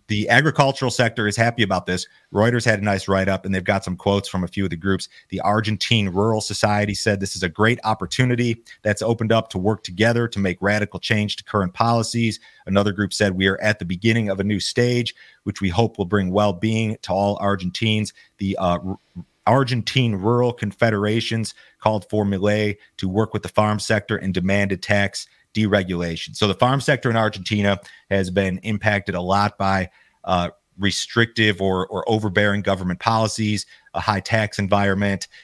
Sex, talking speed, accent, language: male, 185 wpm, American, English